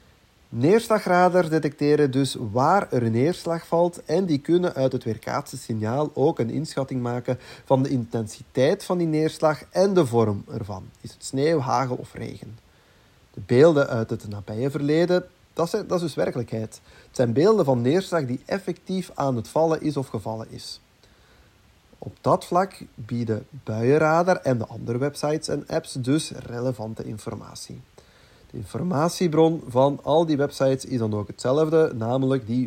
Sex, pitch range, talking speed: male, 115-165 Hz, 160 wpm